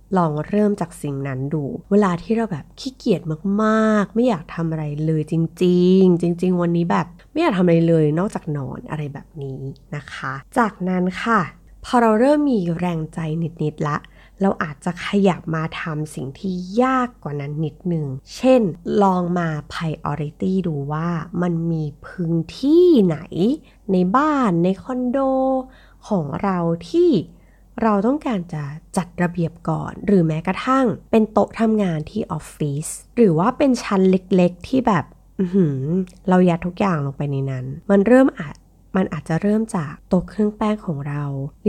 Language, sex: Thai, female